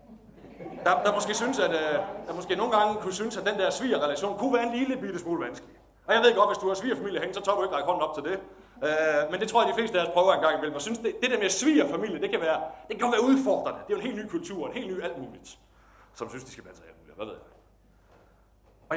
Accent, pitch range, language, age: native, 170-260 Hz, Danish, 30-49